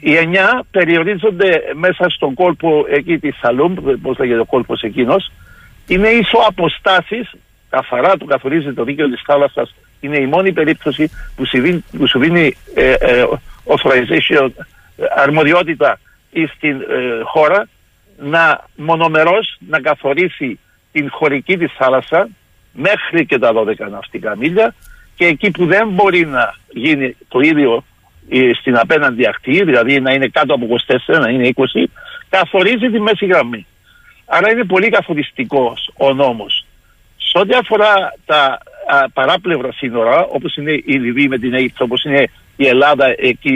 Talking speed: 140 wpm